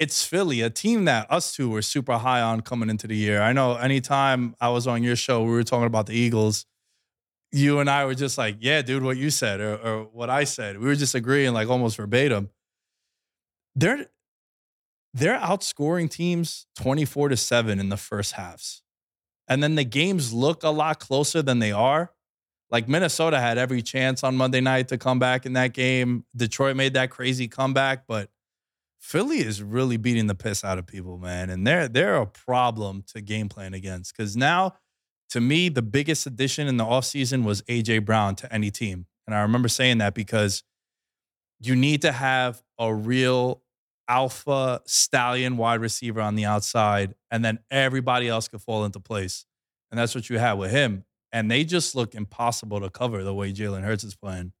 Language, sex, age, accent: English, male, 20-39, American